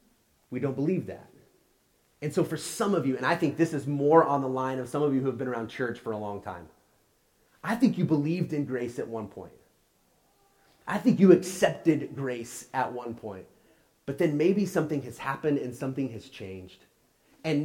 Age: 30-49